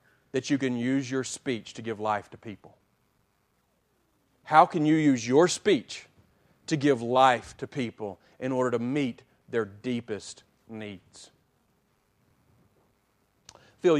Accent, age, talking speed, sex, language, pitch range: American, 40-59, 130 wpm, male, English, 125-165 Hz